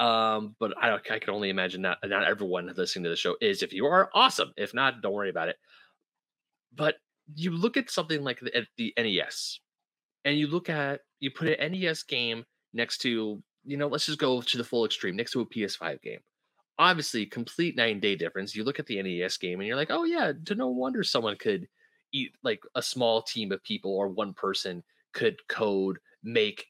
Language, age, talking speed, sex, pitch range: English, 30-49, 210 wpm, male, 100-150 Hz